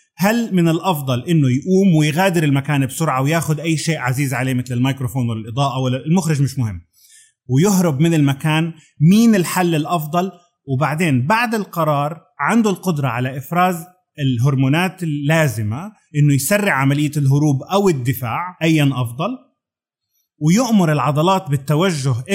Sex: male